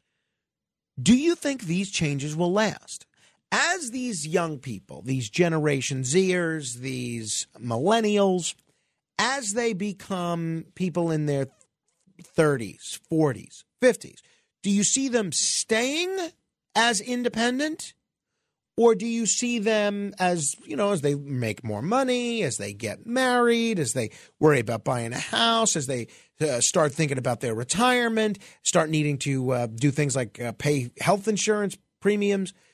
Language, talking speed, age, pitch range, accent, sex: English, 140 wpm, 40-59, 145-220 Hz, American, male